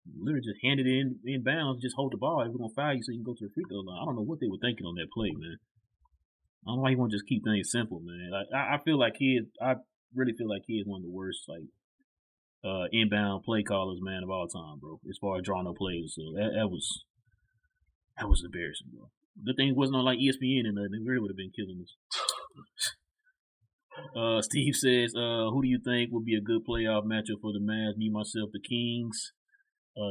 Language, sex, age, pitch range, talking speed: English, male, 30-49, 105-135 Hz, 255 wpm